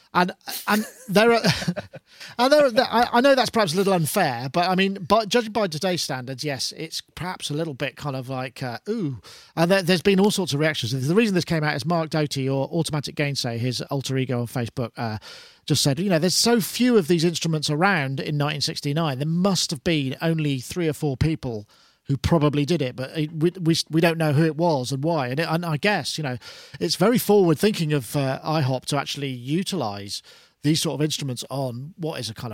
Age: 40-59